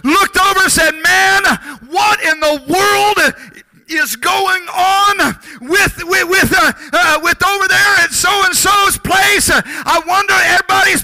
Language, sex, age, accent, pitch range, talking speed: English, male, 50-69, American, 325-385 Hz, 130 wpm